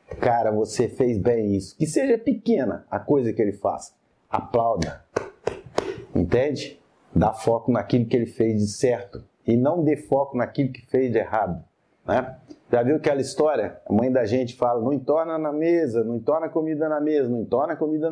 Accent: Brazilian